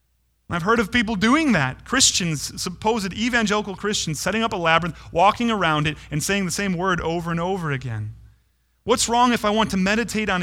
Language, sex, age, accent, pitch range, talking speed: English, male, 30-49, American, 140-195 Hz, 195 wpm